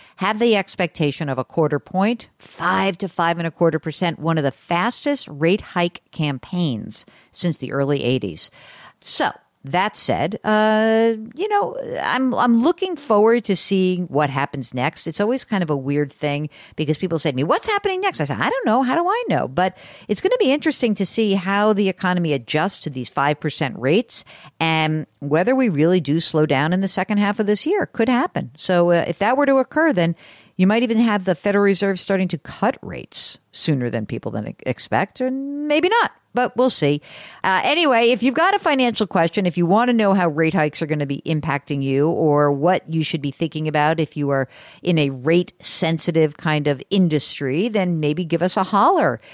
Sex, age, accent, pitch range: female, 50-69, American, 155-225 Hz